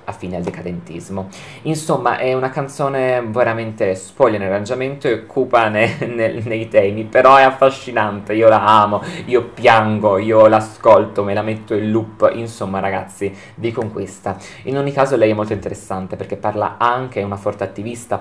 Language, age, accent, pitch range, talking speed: Italian, 20-39, native, 100-120 Hz, 165 wpm